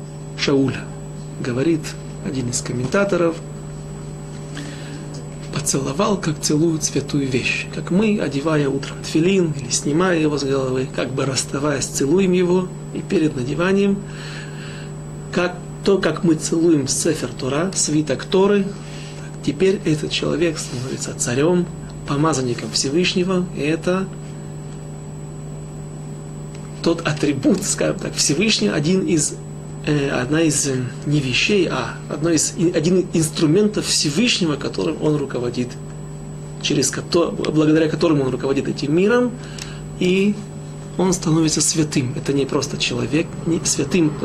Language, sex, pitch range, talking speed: Russian, male, 140-180 Hz, 115 wpm